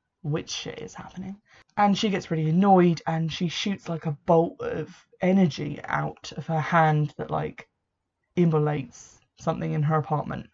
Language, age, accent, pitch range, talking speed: English, 20-39, British, 155-190 Hz, 155 wpm